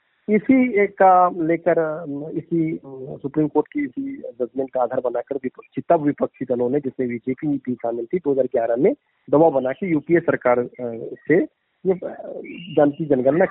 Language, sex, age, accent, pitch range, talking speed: Hindi, male, 40-59, native, 130-175 Hz, 125 wpm